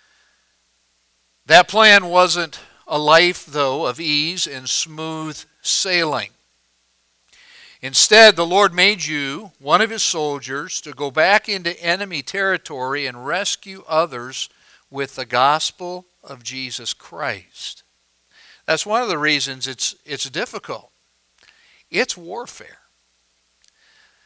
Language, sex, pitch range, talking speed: English, male, 120-180 Hz, 110 wpm